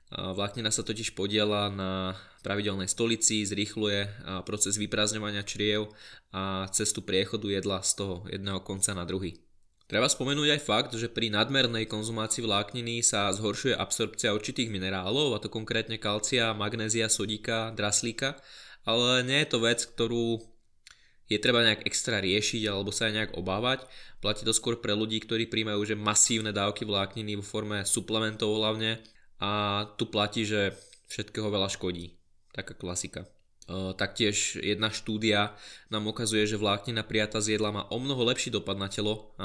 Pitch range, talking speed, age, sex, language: 100-115 Hz, 150 wpm, 20-39, male, Slovak